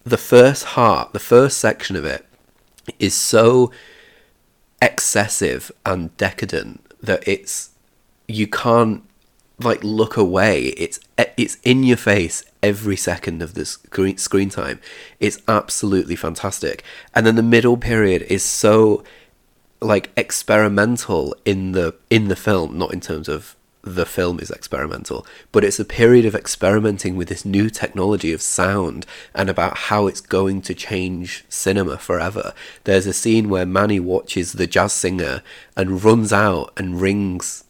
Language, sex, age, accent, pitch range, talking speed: English, male, 30-49, British, 95-110 Hz, 145 wpm